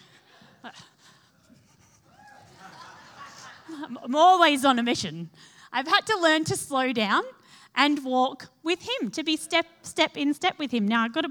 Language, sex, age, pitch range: English, female, 30-49, 220-310 Hz